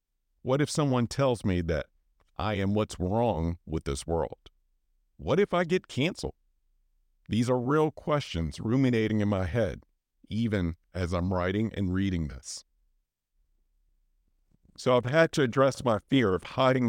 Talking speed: 150 wpm